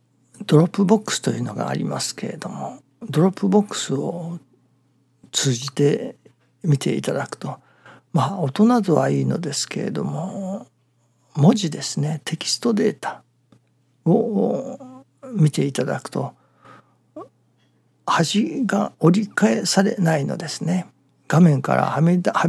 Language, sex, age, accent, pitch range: Japanese, male, 60-79, native, 130-185 Hz